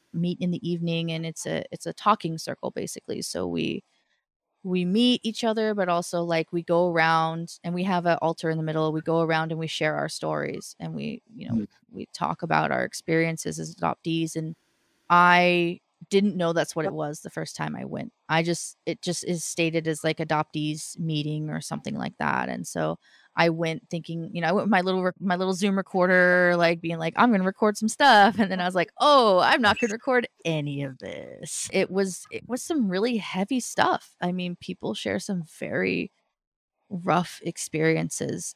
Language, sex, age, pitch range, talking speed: English, female, 20-39, 155-180 Hz, 205 wpm